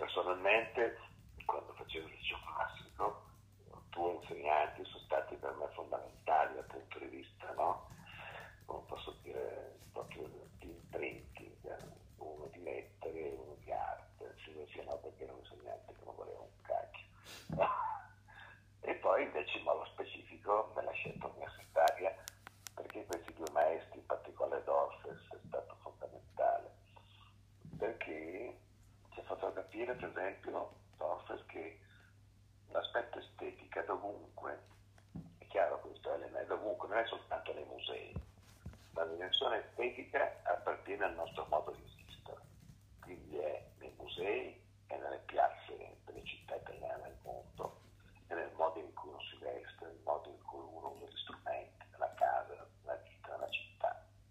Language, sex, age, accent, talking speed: Italian, male, 50-69, native, 135 wpm